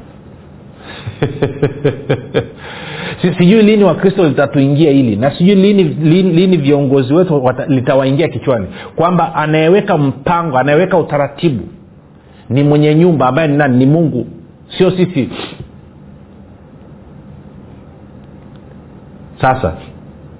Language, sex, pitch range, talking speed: Swahili, male, 110-160 Hz, 90 wpm